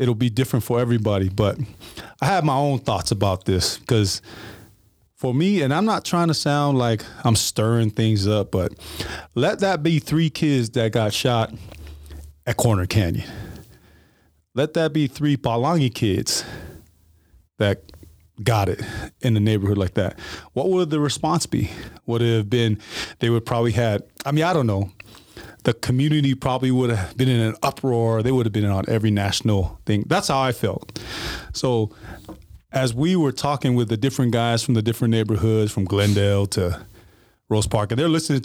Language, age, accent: English, 30-49, American